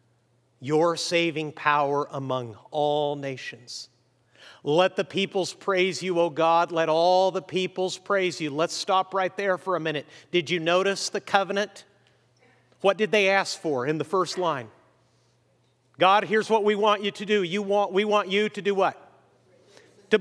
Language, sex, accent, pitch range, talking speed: English, male, American, 180-225 Hz, 170 wpm